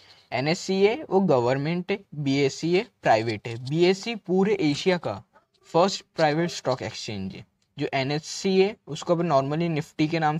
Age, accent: 20-39, native